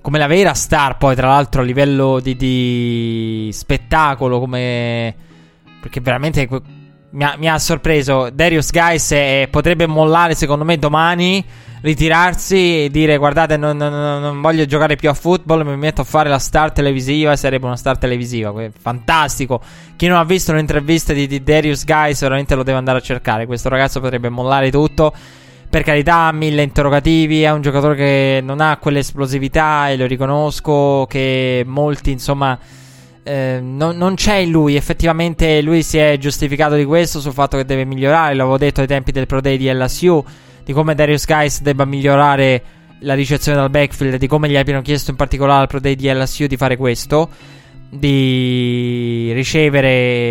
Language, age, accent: Italian, 20-39, native